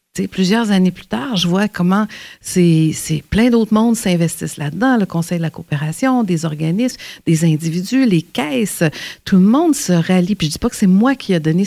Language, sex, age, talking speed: French, female, 50-69, 215 wpm